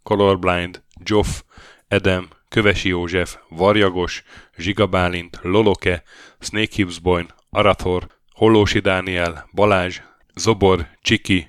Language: Hungarian